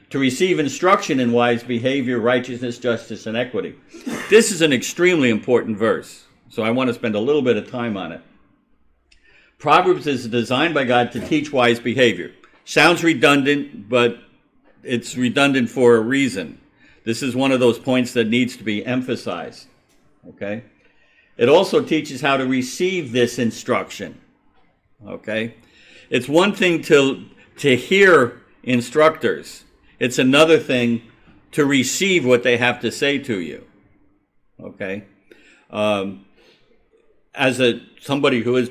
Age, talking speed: 60-79, 145 wpm